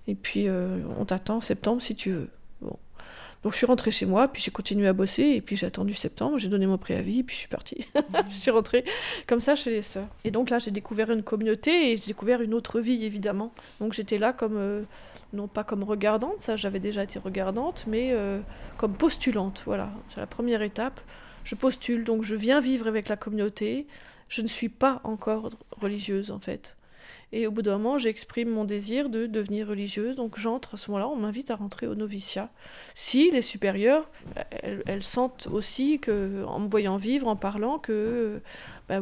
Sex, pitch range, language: female, 205-245 Hz, French